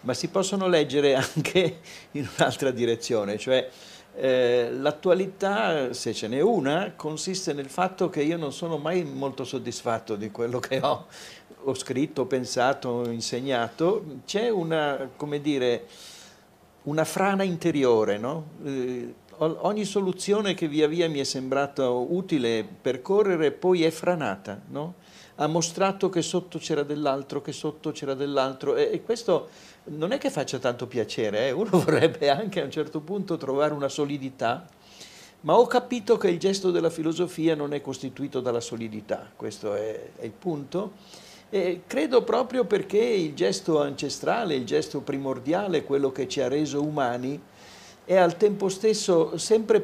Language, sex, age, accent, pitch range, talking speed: Italian, male, 50-69, native, 135-185 Hz, 150 wpm